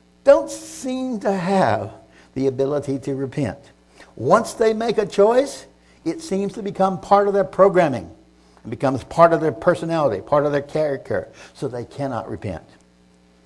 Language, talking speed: English, 155 wpm